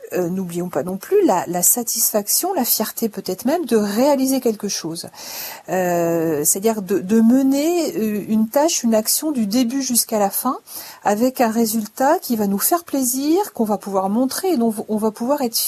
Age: 50-69